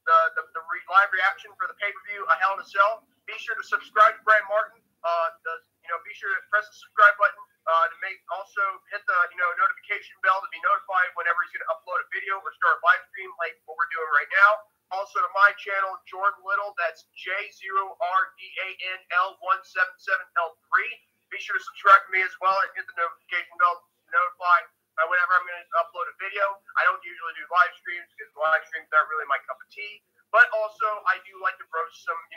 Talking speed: 235 wpm